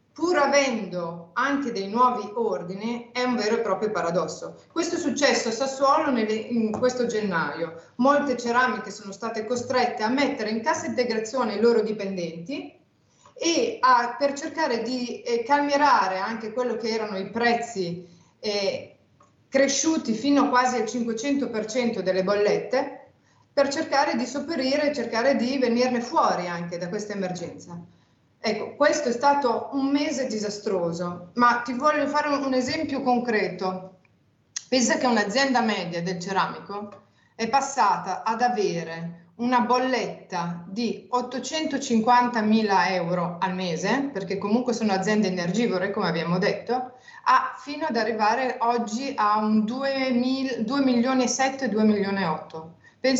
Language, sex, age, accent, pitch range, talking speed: Italian, female, 30-49, native, 200-265 Hz, 130 wpm